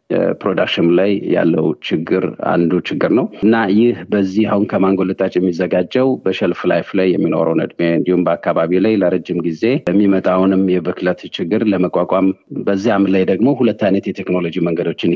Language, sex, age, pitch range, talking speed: Amharic, male, 50-69, 90-100 Hz, 140 wpm